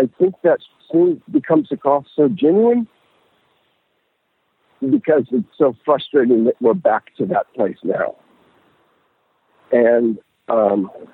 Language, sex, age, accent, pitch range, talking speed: English, male, 50-69, American, 115-150 Hz, 120 wpm